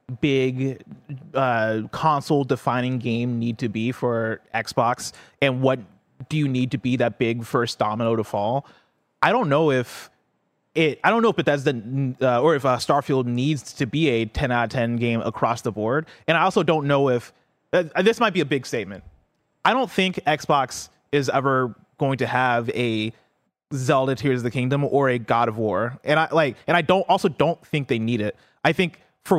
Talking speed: 200 wpm